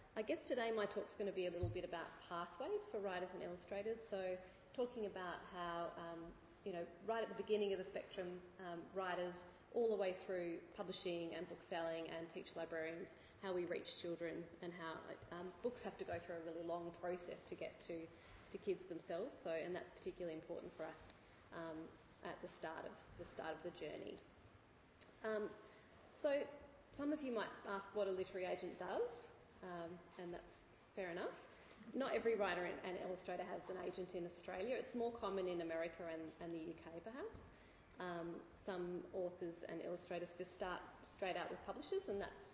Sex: female